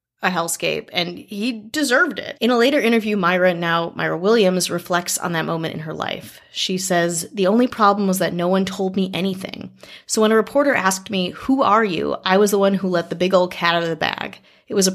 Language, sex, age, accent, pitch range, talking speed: English, female, 30-49, American, 175-205 Hz, 235 wpm